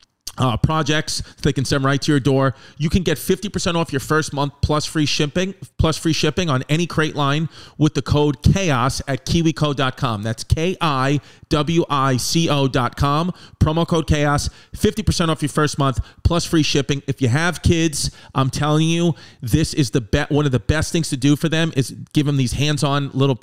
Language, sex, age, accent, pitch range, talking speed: English, male, 40-59, American, 130-150 Hz, 185 wpm